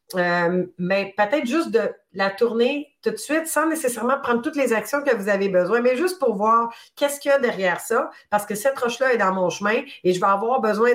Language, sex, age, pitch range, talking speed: French, female, 30-49, 180-240 Hz, 235 wpm